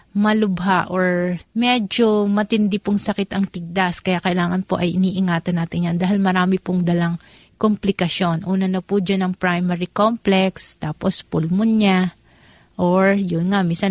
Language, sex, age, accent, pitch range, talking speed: Filipino, female, 30-49, native, 180-200 Hz, 140 wpm